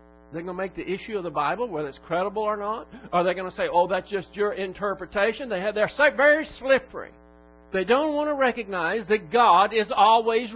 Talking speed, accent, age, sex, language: 220 wpm, American, 60-79, male, English